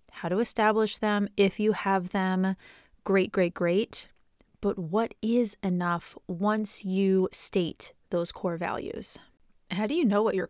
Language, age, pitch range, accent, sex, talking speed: English, 20-39, 175-210 Hz, American, female, 155 wpm